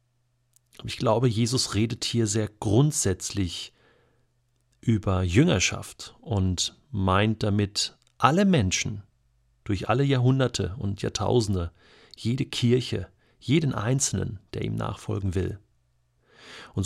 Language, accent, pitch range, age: German, German, 105-120 Hz, 40-59